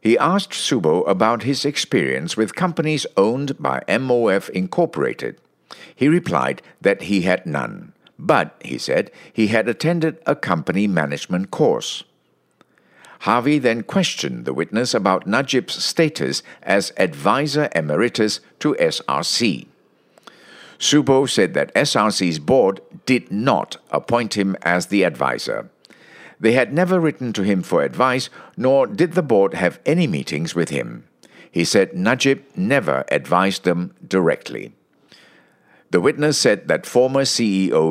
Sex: male